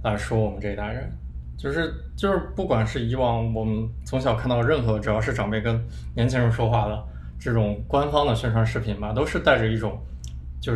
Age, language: 20-39, Chinese